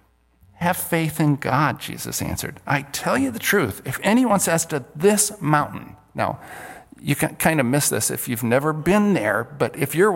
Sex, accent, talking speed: male, American, 190 wpm